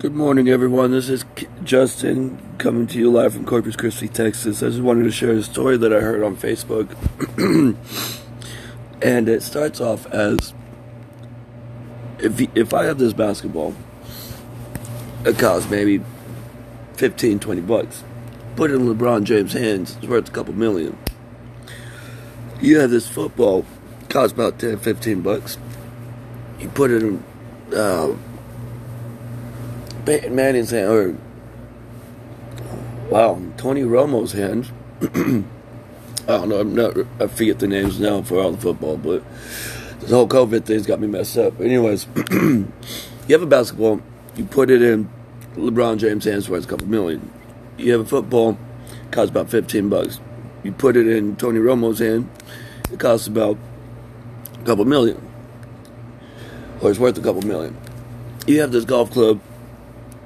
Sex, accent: male, American